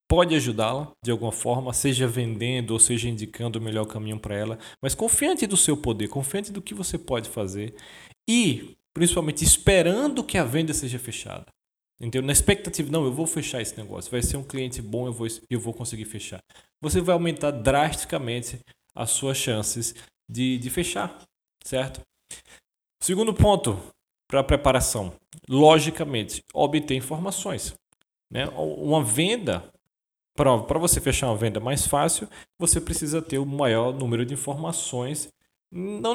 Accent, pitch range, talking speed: Brazilian, 120-165 Hz, 150 wpm